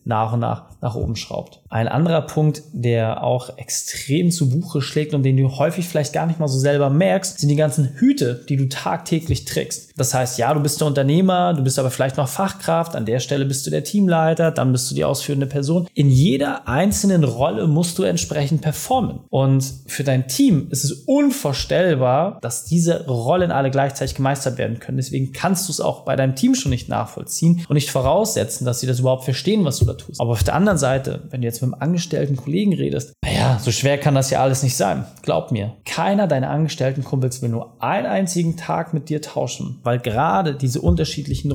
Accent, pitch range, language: German, 130-160 Hz, German